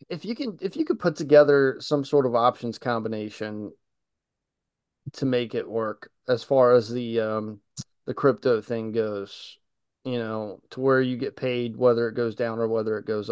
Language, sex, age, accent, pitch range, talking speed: English, male, 30-49, American, 115-145 Hz, 185 wpm